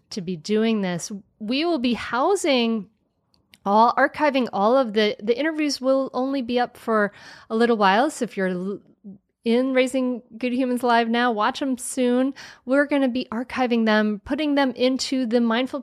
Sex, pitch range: female, 195-245 Hz